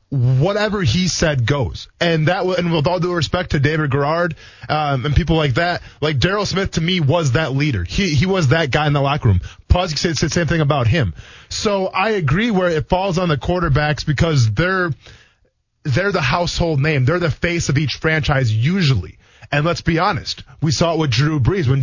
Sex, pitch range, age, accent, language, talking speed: male, 135-175 Hz, 20-39, American, English, 210 wpm